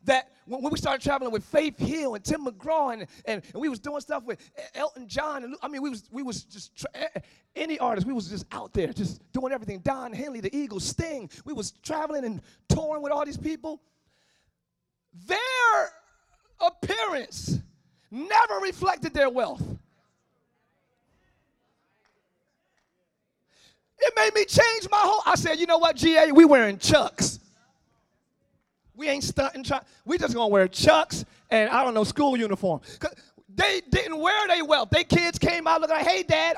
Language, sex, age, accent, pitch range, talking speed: English, male, 30-49, American, 255-335 Hz, 175 wpm